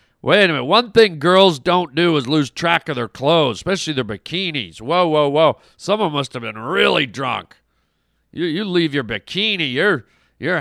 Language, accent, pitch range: English, American, 150-210 Hz